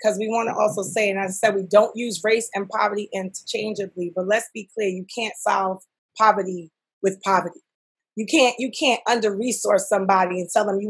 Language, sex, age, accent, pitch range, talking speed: English, female, 30-49, American, 200-250 Hz, 205 wpm